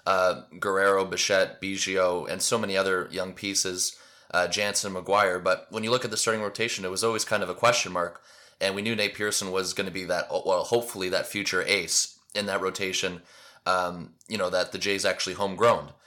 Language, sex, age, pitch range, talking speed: English, male, 20-39, 95-110 Hz, 205 wpm